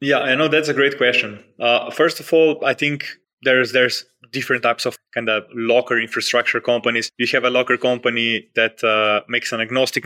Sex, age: male, 20-39